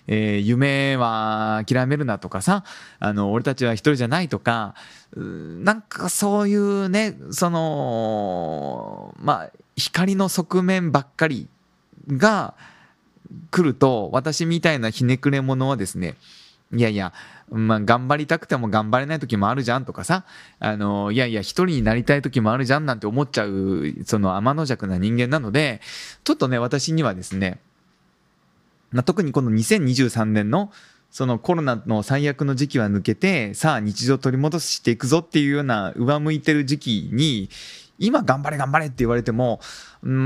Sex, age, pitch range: male, 20-39, 110-155 Hz